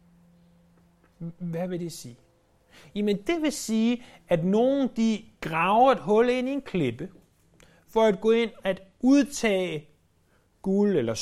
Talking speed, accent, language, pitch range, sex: 140 wpm, native, Danish, 130-205 Hz, male